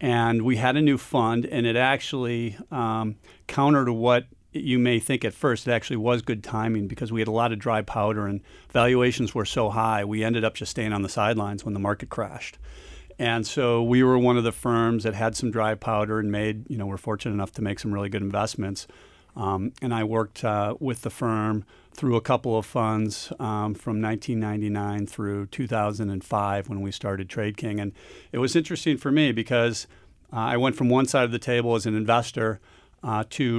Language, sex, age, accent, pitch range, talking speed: English, male, 40-59, American, 110-120 Hz, 210 wpm